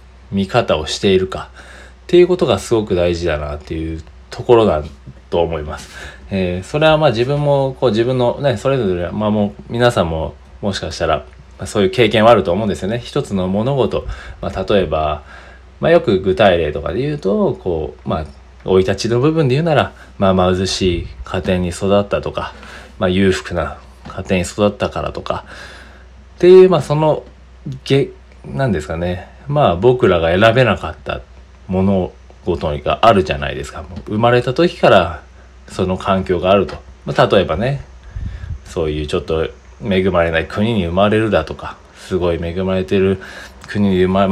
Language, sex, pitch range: Japanese, male, 80-120 Hz